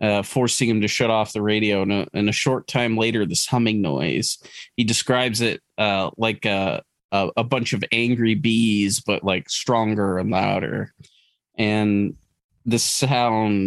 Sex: male